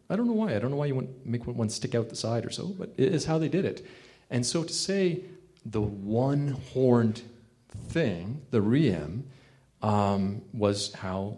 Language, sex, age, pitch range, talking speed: English, male, 40-59, 100-130 Hz, 195 wpm